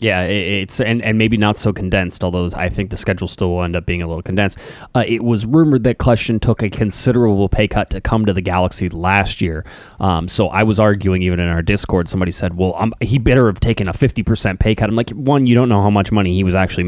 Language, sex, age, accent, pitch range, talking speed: English, male, 20-39, American, 95-115 Hz, 255 wpm